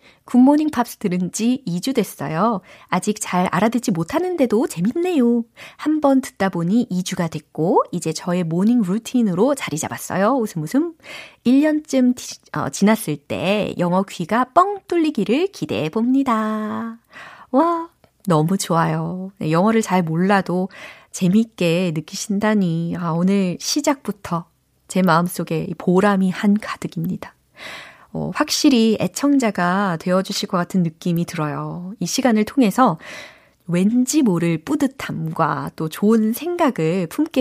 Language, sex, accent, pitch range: Korean, female, native, 170-245 Hz